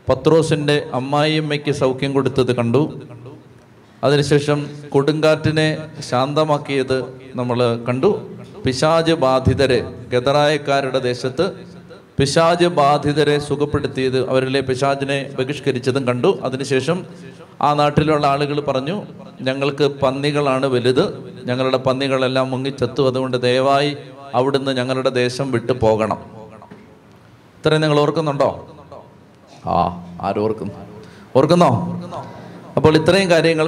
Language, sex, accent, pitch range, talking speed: Malayalam, male, native, 130-145 Hz, 90 wpm